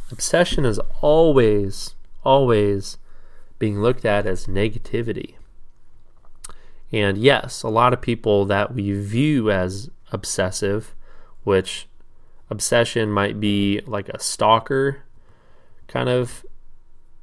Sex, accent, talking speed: male, American, 100 wpm